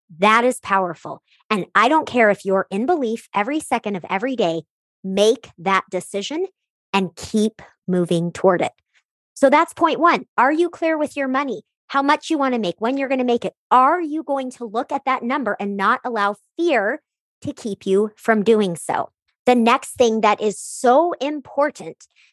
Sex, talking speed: male, 190 wpm